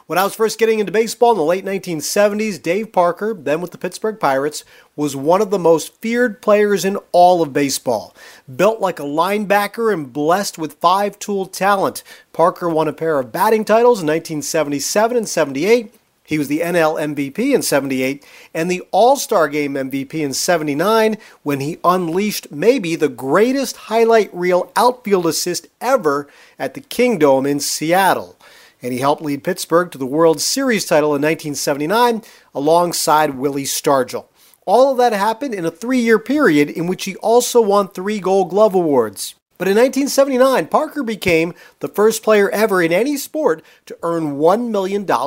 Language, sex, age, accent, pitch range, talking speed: English, male, 40-59, American, 155-220 Hz, 170 wpm